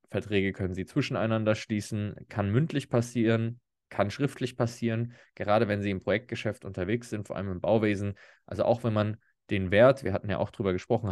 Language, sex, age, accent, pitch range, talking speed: German, male, 20-39, German, 100-120 Hz, 185 wpm